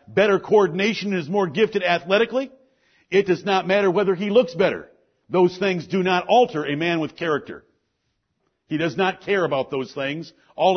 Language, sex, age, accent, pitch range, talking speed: English, male, 50-69, American, 150-195 Hz, 175 wpm